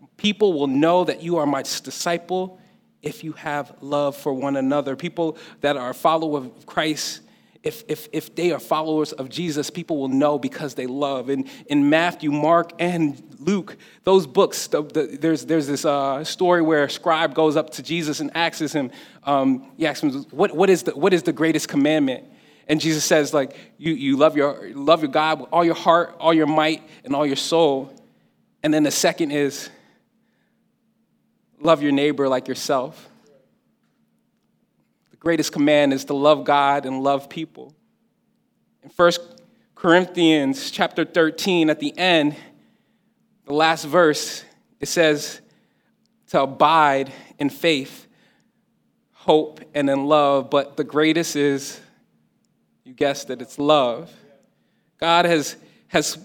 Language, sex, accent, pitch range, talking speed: English, male, American, 145-175 Hz, 160 wpm